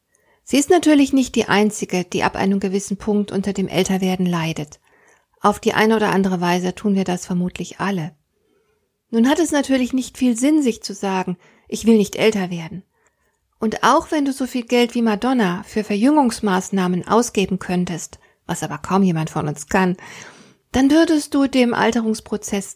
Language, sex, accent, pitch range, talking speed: German, female, German, 195-245 Hz, 175 wpm